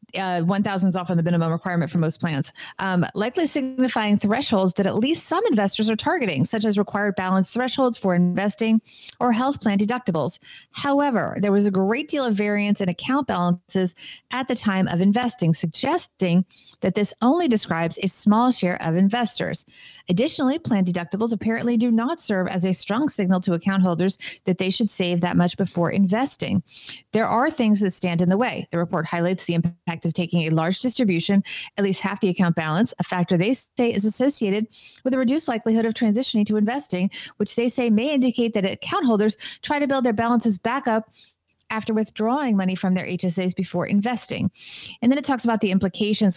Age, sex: 30-49, female